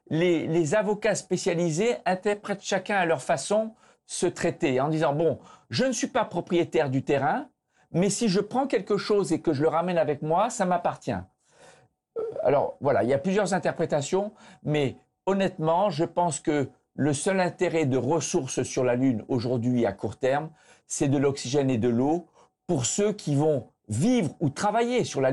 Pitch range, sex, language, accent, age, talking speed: 140-195 Hz, male, French, French, 50-69, 180 wpm